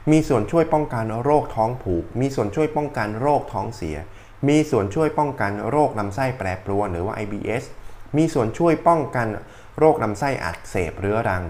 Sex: male